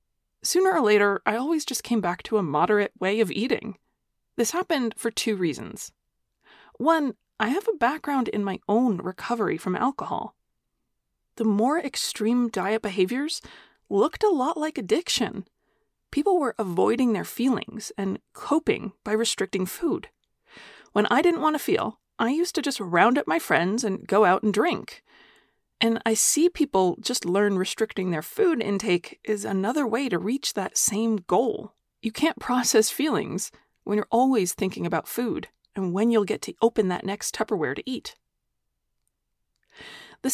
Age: 30-49